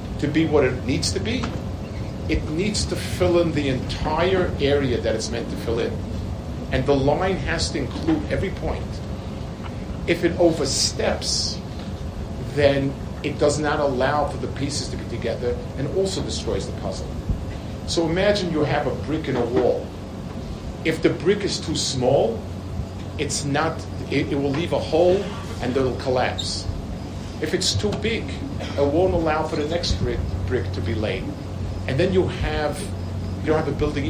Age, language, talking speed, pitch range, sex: 50-69, English, 170 wpm, 95-140 Hz, male